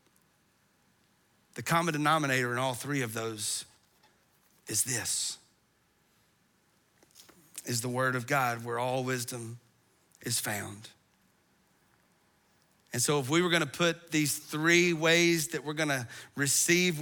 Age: 40-59